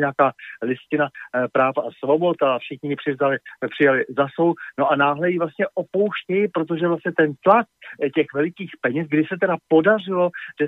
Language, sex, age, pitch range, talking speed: Slovak, male, 50-69, 125-160 Hz, 155 wpm